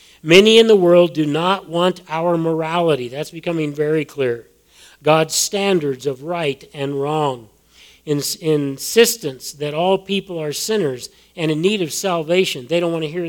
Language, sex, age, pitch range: English, male, 40-59, 135-180 Hz